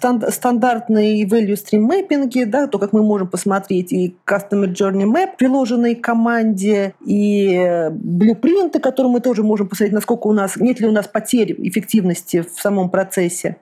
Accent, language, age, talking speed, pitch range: native, Russian, 40-59, 145 wpm, 200-235 Hz